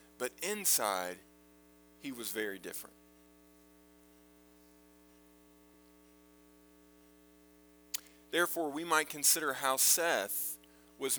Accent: American